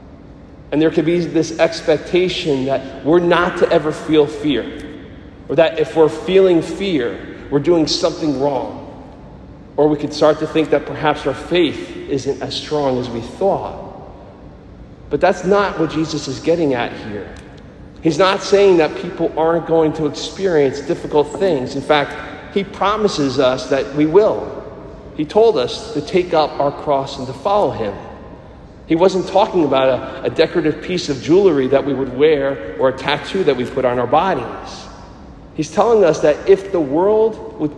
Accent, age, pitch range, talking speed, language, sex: American, 40-59, 145-180 Hz, 175 wpm, English, male